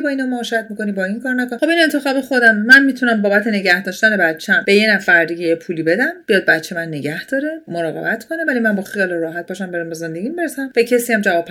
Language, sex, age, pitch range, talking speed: Persian, female, 30-49, 185-250 Hz, 225 wpm